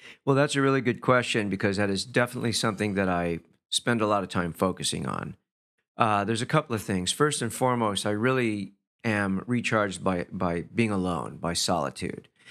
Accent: American